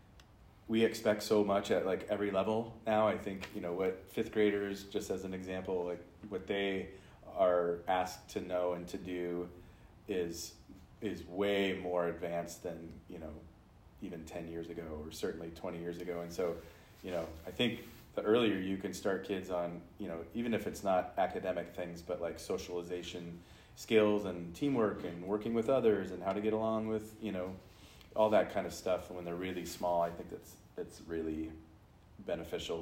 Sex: male